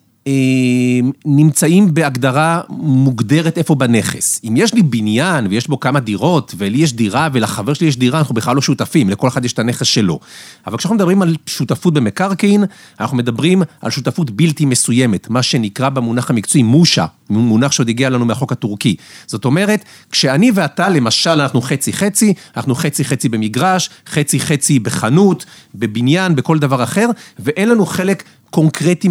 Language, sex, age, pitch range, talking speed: Hebrew, male, 40-59, 125-185 Hz, 145 wpm